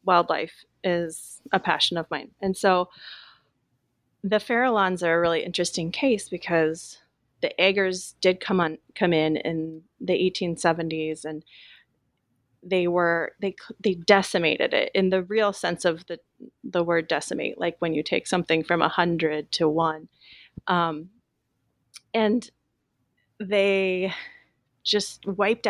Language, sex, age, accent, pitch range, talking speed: English, female, 30-49, American, 160-190 Hz, 135 wpm